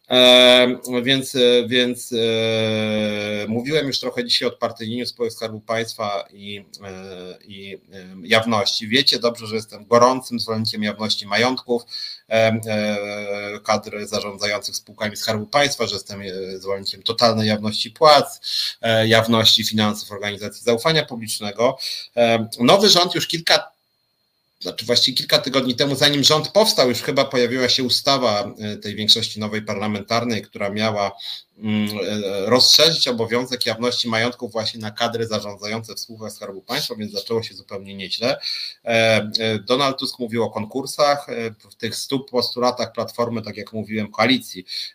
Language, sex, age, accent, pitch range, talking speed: Polish, male, 30-49, native, 105-120 Hz, 130 wpm